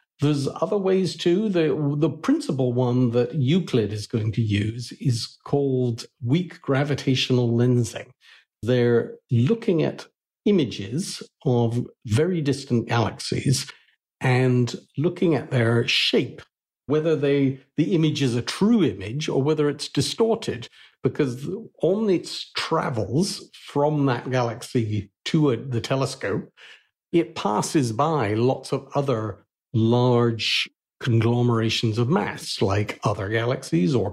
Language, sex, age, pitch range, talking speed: English, male, 60-79, 120-160 Hz, 120 wpm